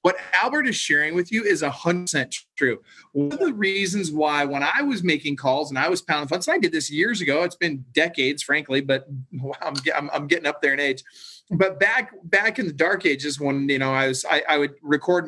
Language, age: English, 30-49